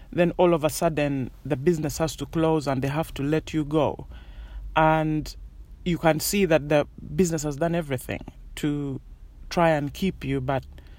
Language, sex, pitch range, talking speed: English, male, 135-170 Hz, 180 wpm